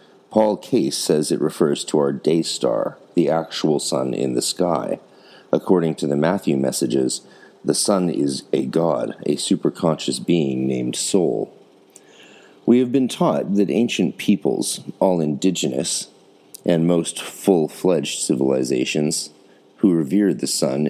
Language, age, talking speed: English, 40-59, 135 wpm